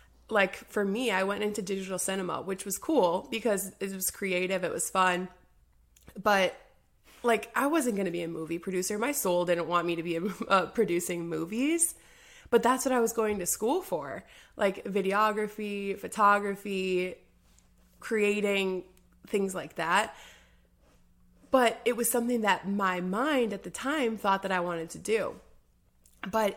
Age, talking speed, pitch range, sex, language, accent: 20-39, 165 wpm, 180-220 Hz, female, English, American